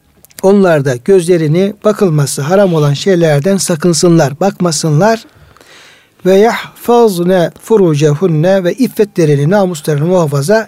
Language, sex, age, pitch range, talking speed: Turkish, male, 60-79, 155-210 Hz, 85 wpm